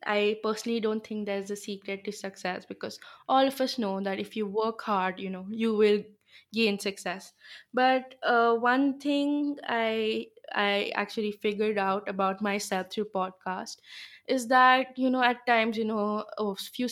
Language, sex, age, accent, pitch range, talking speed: English, female, 20-39, Indian, 195-225 Hz, 175 wpm